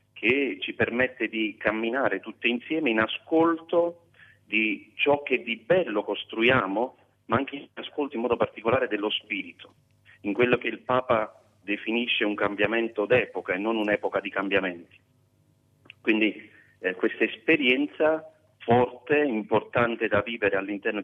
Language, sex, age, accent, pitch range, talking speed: Italian, male, 40-59, native, 100-120 Hz, 135 wpm